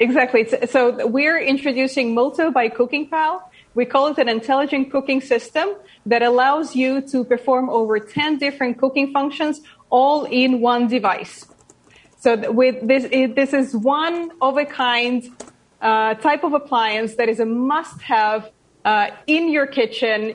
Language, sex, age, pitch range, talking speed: English, female, 30-49, 230-280 Hz, 145 wpm